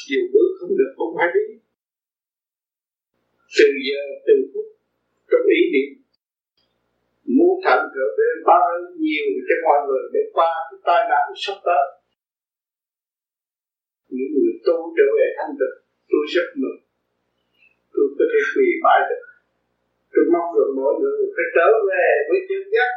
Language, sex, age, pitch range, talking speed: Vietnamese, male, 50-69, 290-430 Hz, 130 wpm